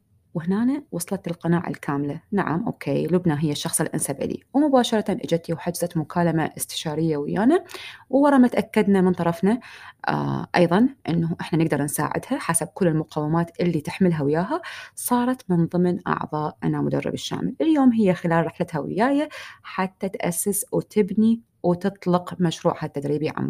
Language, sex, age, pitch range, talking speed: Arabic, female, 30-49, 165-215 Hz, 135 wpm